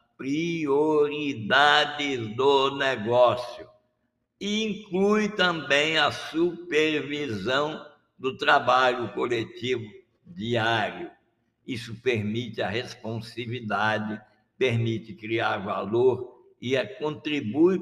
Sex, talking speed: male, 65 wpm